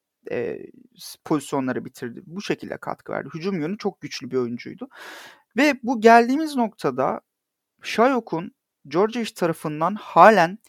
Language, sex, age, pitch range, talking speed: Turkish, male, 40-59, 150-215 Hz, 120 wpm